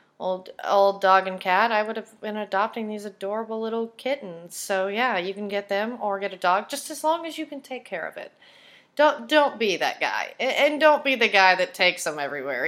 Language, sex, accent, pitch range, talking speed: English, female, American, 160-230 Hz, 225 wpm